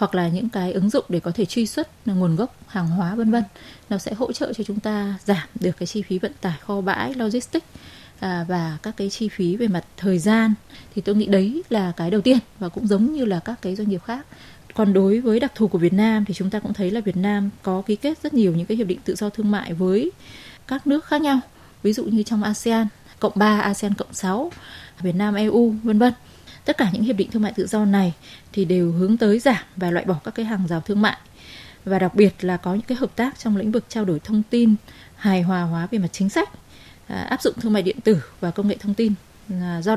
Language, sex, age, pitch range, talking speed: Vietnamese, female, 20-39, 185-225 Hz, 255 wpm